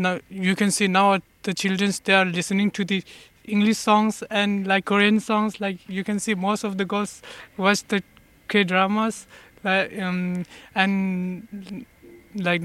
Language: English